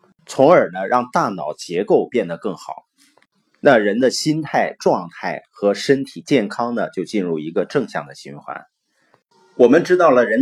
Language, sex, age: Chinese, male, 30-49